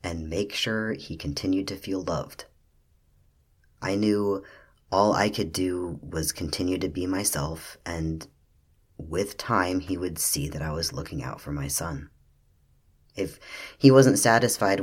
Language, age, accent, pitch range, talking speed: English, 30-49, American, 75-100 Hz, 150 wpm